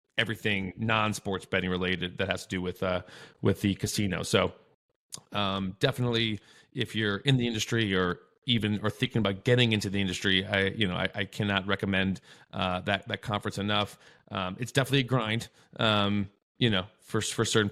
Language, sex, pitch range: English, male, 95-115 Hz